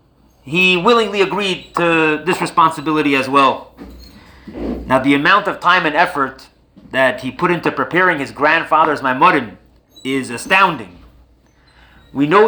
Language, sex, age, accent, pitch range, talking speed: English, male, 30-49, American, 140-205 Hz, 130 wpm